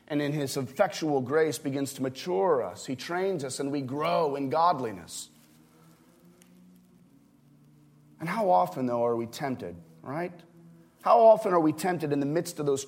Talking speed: 165 wpm